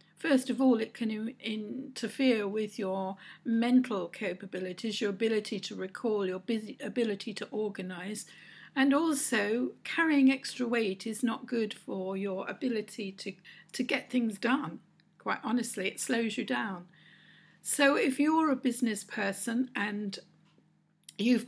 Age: 60-79